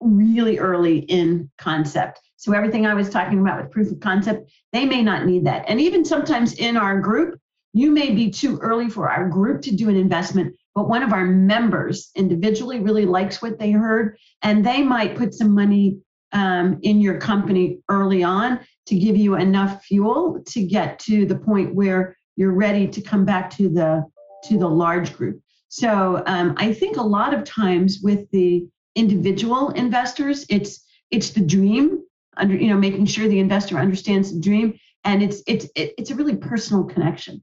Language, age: English, 40-59